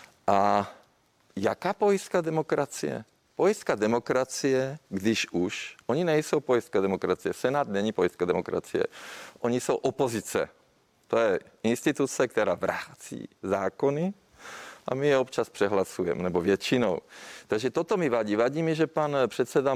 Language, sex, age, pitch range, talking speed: Czech, male, 40-59, 115-145 Hz, 125 wpm